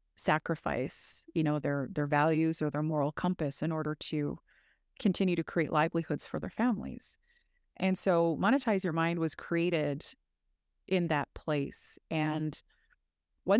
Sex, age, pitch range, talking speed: female, 30-49, 150-180 Hz, 140 wpm